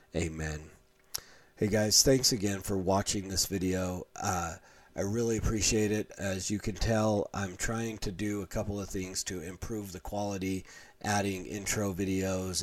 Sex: male